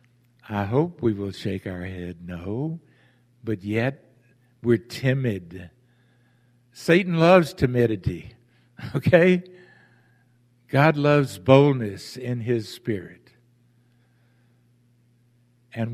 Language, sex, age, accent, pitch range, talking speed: English, male, 60-79, American, 120-145 Hz, 85 wpm